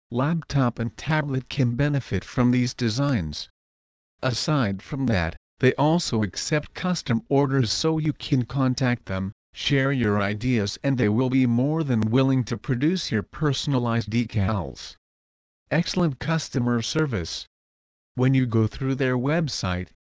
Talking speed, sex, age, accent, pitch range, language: 135 wpm, male, 50-69, American, 110-140 Hz, English